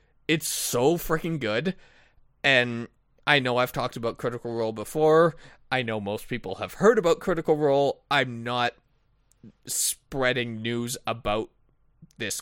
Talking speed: 135 wpm